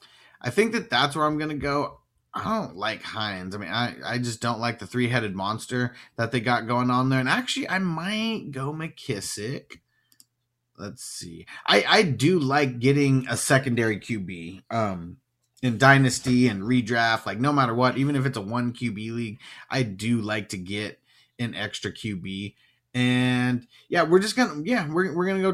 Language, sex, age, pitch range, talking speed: English, male, 30-49, 120-145 Hz, 185 wpm